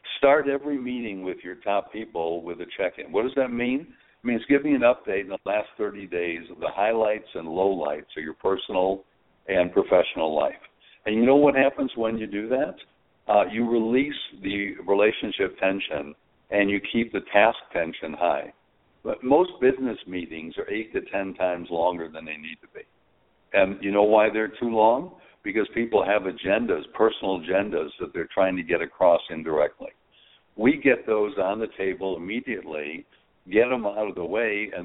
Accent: American